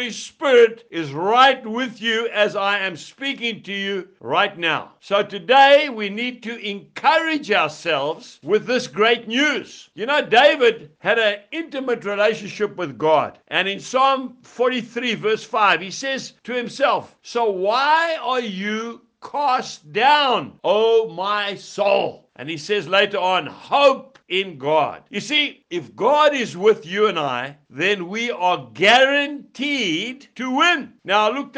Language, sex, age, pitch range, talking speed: English, male, 60-79, 200-265 Hz, 150 wpm